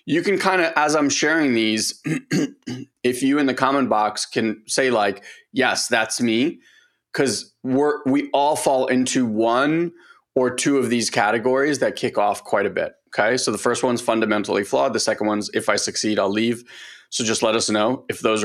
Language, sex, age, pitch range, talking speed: English, male, 30-49, 115-140 Hz, 195 wpm